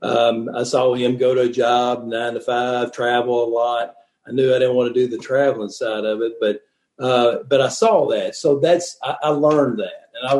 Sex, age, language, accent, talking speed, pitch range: male, 50-69, English, American, 230 wpm, 125-150 Hz